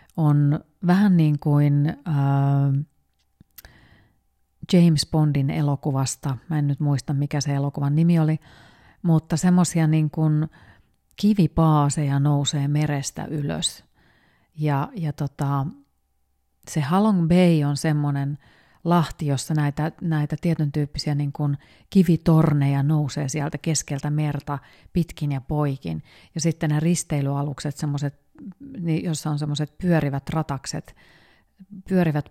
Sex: female